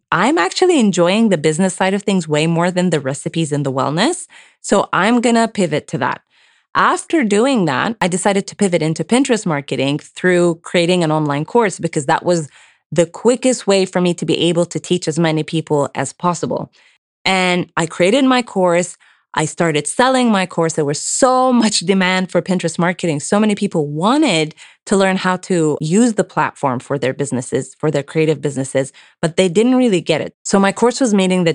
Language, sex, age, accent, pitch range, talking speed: English, female, 20-39, American, 160-210 Hz, 200 wpm